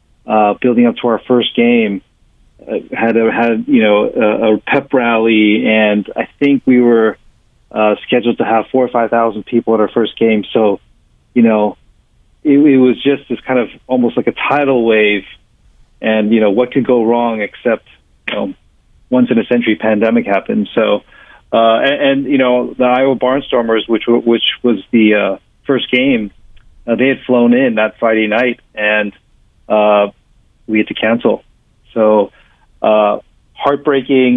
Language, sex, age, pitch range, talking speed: English, male, 40-59, 105-125 Hz, 175 wpm